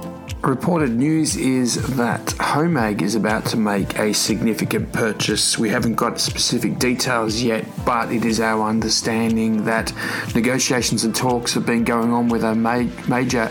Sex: male